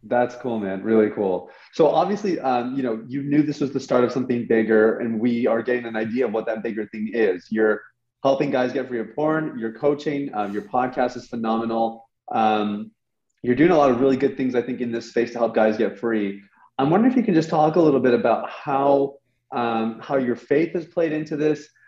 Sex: male